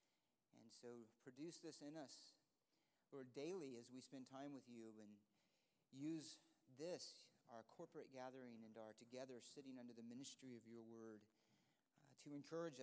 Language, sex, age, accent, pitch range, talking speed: English, male, 40-59, American, 120-165 Hz, 150 wpm